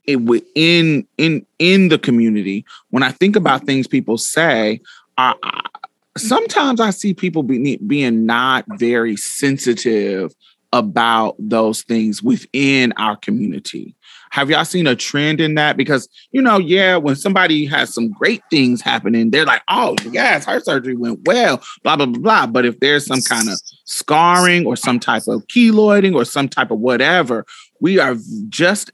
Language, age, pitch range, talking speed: English, 30-49, 115-175 Hz, 165 wpm